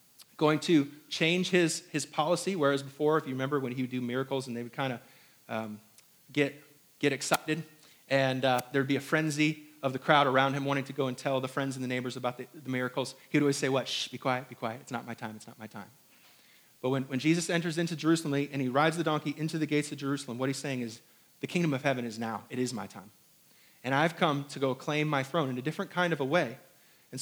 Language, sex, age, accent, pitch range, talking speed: English, male, 30-49, American, 130-155 Hz, 255 wpm